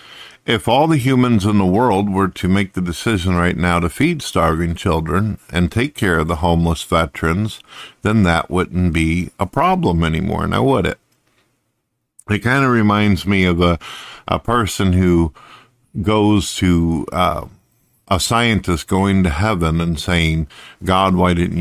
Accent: American